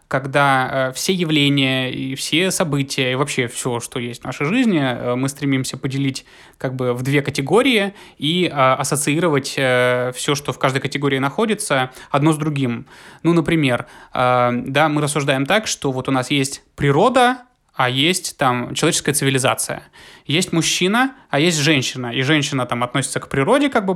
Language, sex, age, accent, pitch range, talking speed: Russian, male, 20-39, native, 130-165 Hz, 160 wpm